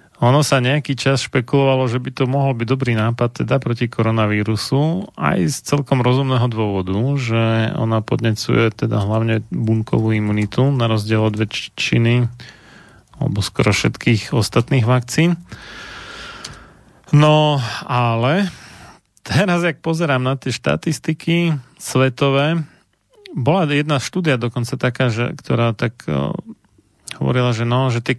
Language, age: Slovak, 30-49